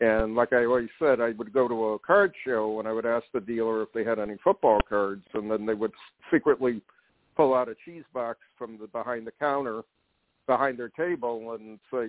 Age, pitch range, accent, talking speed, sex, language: 60-79, 110-130 Hz, American, 220 wpm, male, English